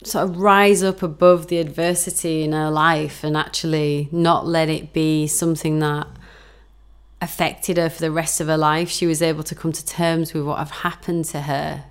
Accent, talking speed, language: British, 195 wpm, English